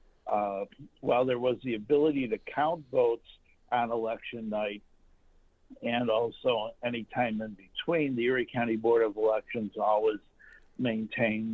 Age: 60-79